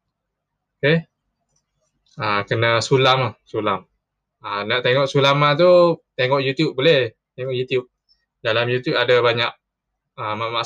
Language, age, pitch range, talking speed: Malay, 20-39, 110-145 Hz, 140 wpm